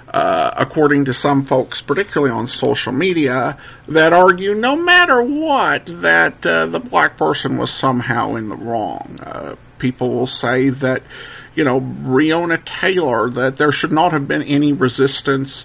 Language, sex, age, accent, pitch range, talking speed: English, male, 50-69, American, 130-180 Hz, 155 wpm